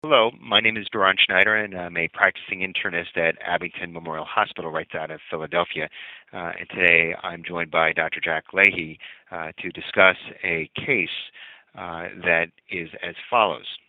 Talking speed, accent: 165 wpm, American